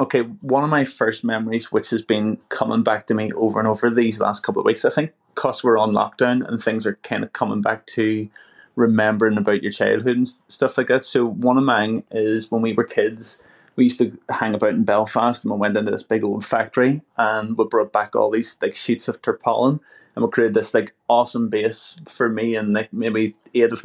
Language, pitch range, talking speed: English, 115-135 Hz, 230 wpm